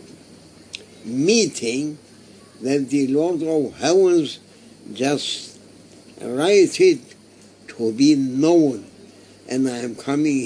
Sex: male